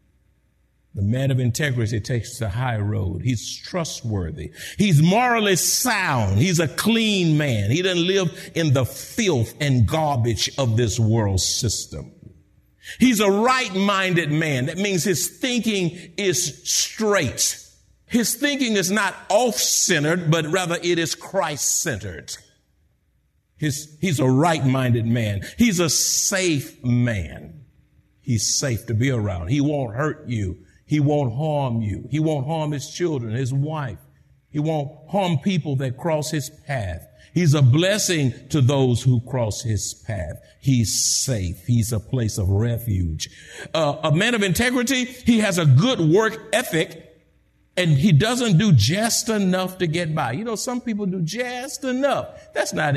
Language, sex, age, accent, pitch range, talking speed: English, male, 50-69, American, 120-185 Hz, 155 wpm